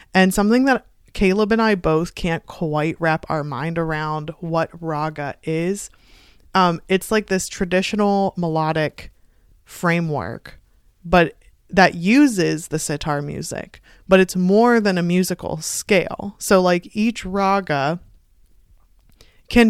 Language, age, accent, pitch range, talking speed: English, 20-39, American, 155-190 Hz, 125 wpm